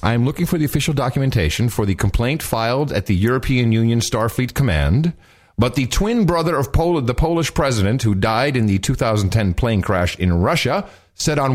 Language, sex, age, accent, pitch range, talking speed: English, male, 40-59, American, 95-140 Hz, 190 wpm